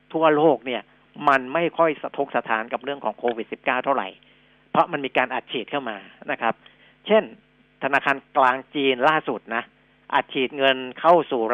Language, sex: Thai, male